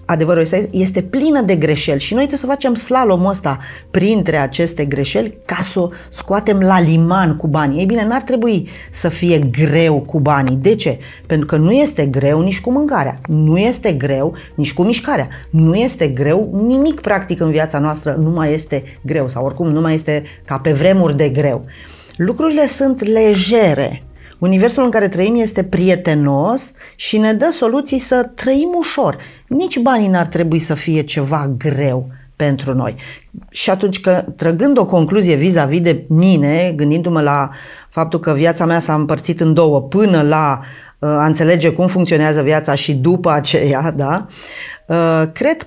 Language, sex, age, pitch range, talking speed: Romanian, female, 30-49, 150-200 Hz, 170 wpm